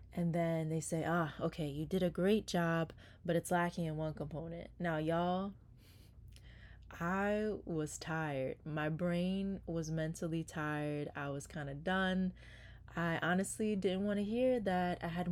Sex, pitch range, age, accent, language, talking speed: female, 135-175 Hz, 20-39, American, English, 160 wpm